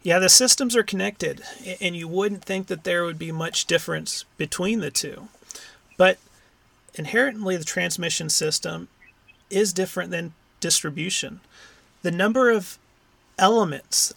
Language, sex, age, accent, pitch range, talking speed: English, male, 30-49, American, 155-200 Hz, 130 wpm